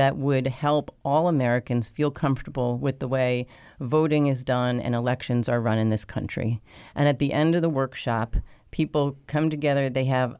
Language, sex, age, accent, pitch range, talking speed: English, female, 30-49, American, 125-145 Hz, 185 wpm